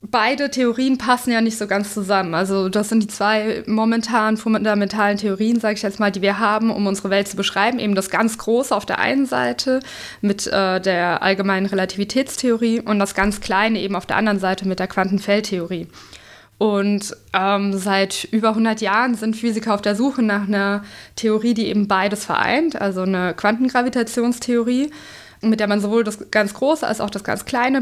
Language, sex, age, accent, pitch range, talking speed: German, female, 20-39, German, 195-225 Hz, 185 wpm